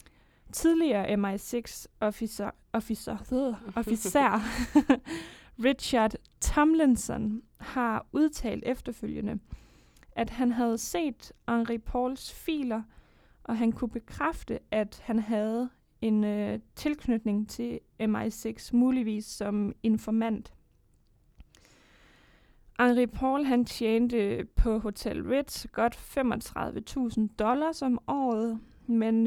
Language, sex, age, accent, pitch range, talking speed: Danish, female, 20-39, native, 220-255 Hz, 90 wpm